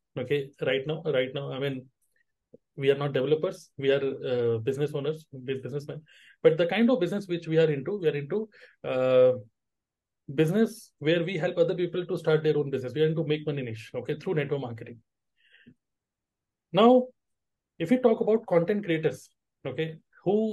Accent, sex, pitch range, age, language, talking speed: native, male, 145-185 Hz, 30-49, Hindi, 180 wpm